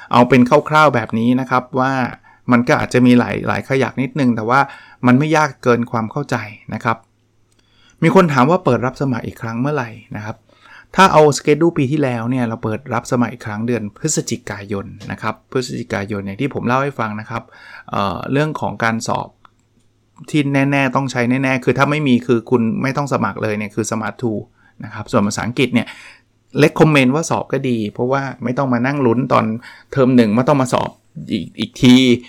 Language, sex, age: English, male, 20-39